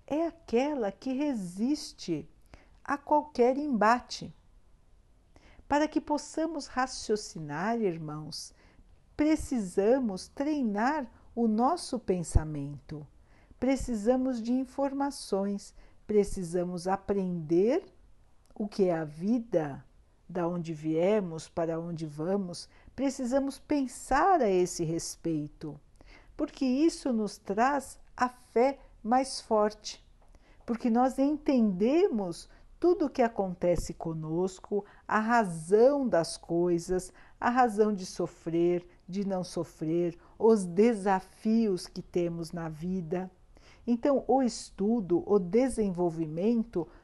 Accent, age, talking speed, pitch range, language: Brazilian, 60-79, 95 wpm, 175-260 Hz, Portuguese